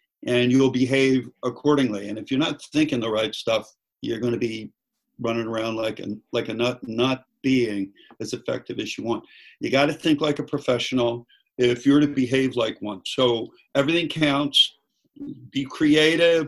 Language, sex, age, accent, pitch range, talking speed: English, male, 50-69, American, 120-160 Hz, 170 wpm